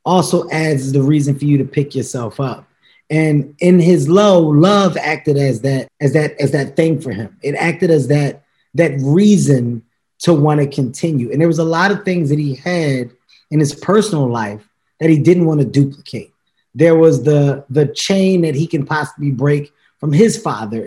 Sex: male